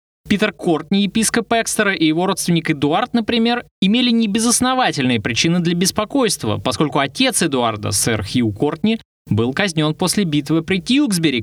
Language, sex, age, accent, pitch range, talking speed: Russian, male, 20-39, native, 130-200 Hz, 135 wpm